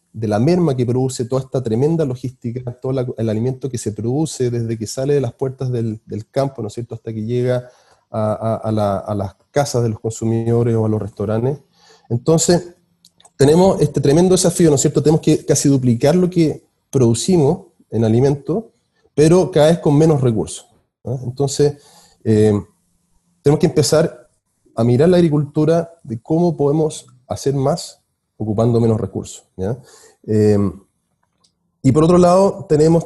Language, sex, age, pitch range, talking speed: Spanish, male, 30-49, 115-155 Hz, 170 wpm